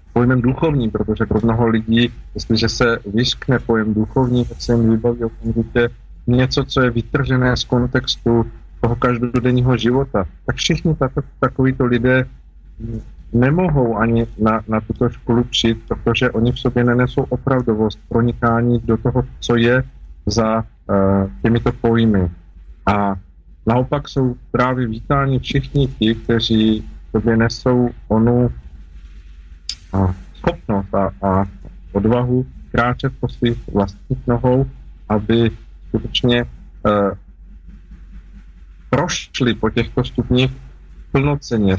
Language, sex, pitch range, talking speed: Slovak, male, 100-125 Hz, 115 wpm